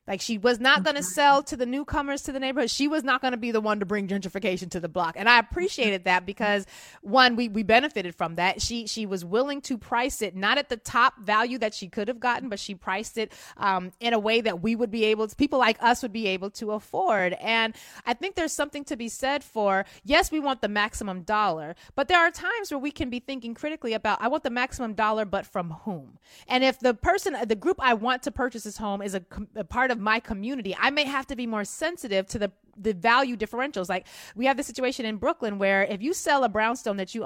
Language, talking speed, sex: English, 250 wpm, female